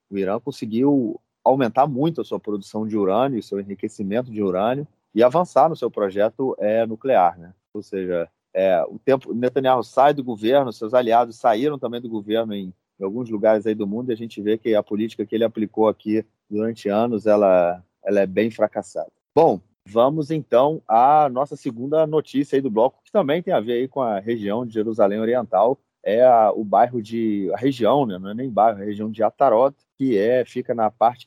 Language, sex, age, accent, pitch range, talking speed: Portuguese, male, 30-49, Brazilian, 100-125 Hz, 200 wpm